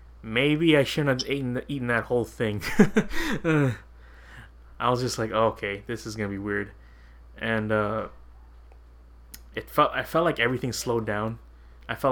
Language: English